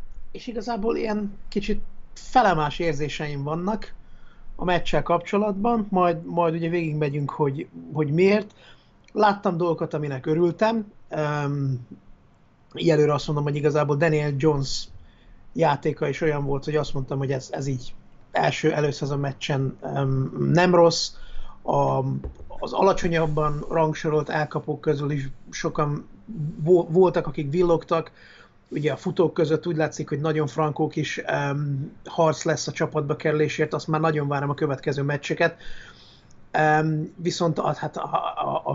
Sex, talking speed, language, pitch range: male, 140 wpm, Hungarian, 145-170 Hz